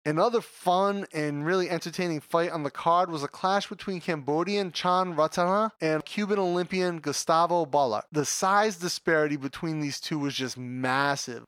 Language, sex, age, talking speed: English, male, 30-49, 155 wpm